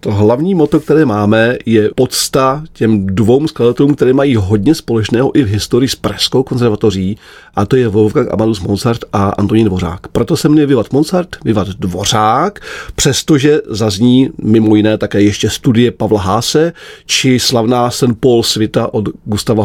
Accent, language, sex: native, Czech, male